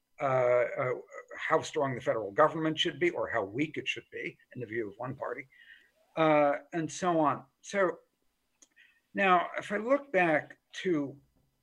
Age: 60-79